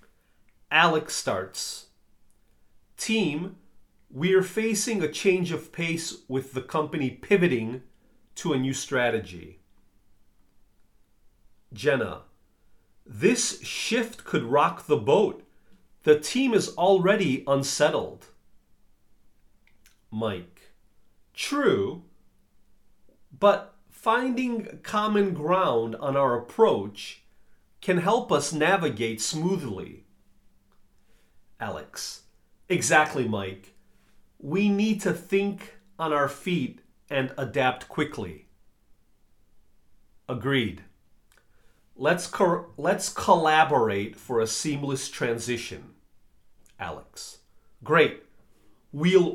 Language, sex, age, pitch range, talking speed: English, male, 40-59, 110-180 Hz, 85 wpm